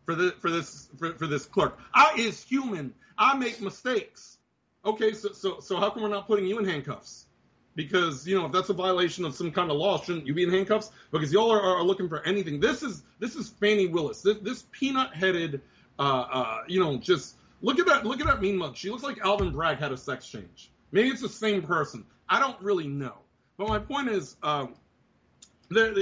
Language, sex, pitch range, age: English, male, 145-205 Hz, 30-49